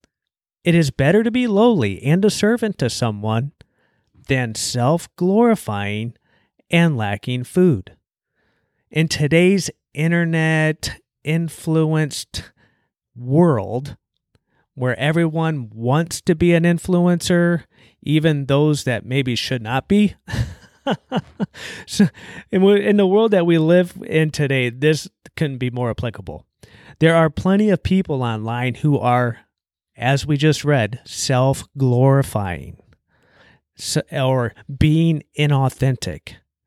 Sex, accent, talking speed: male, American, 105 wpm